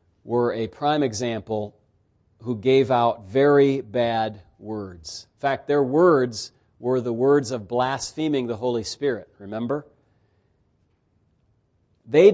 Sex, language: male, English